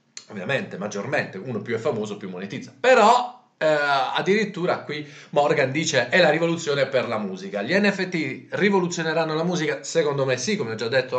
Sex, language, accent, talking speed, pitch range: male, Italian, native, 170 wpm, 125-180 Hz